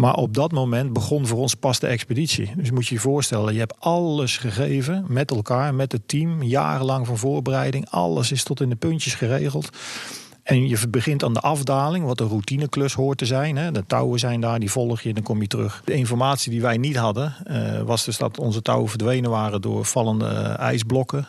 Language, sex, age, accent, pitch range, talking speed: Dutch, male, 40-59, Dutch, 115-135 Hz, 210 wpm